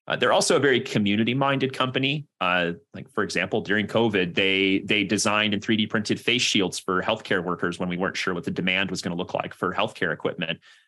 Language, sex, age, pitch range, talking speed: English, male, 30-49, 100-120 Hz, 215 wpm